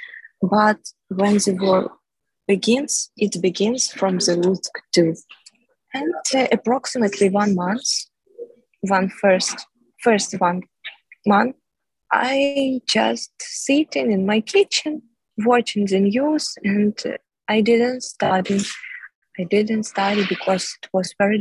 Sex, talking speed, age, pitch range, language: female, 120 wpm, 20-39, 195-245 Hz, English